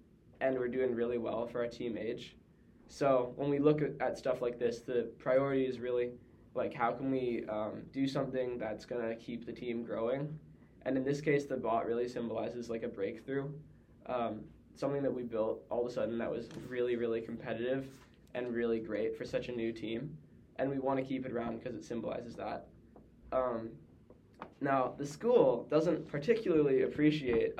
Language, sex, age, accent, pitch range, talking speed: English, male, 10-29, American, 120-140 Hz, 185 wpm